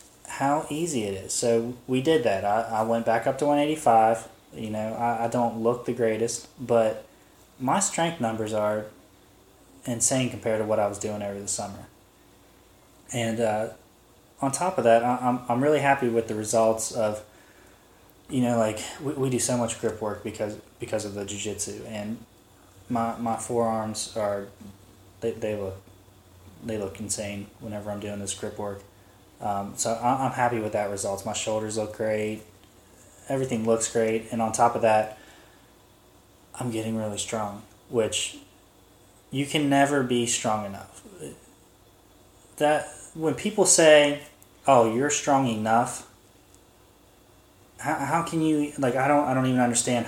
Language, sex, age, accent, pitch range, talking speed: English, male, 10-29, American, 100-120 Hz, 160 wpm